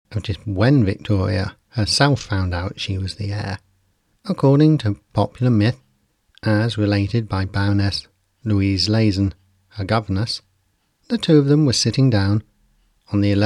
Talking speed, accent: 145 wpm, British